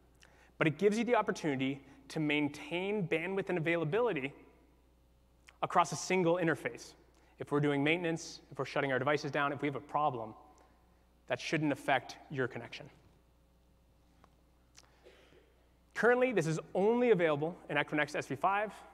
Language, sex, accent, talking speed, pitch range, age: English, male, American, 135 wpm, 120-165 Hz, 30-49